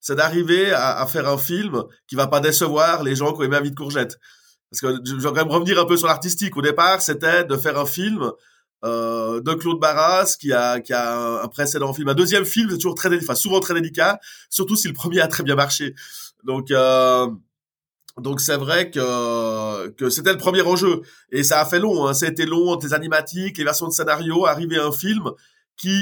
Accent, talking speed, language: French, 225 wpm, English